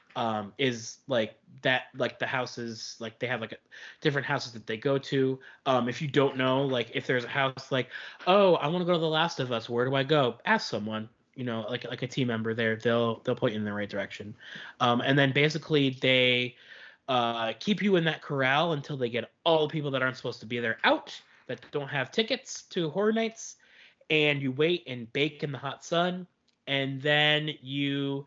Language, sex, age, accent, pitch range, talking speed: English, male, 20-39, American, 125-155 Hz, 220 wpm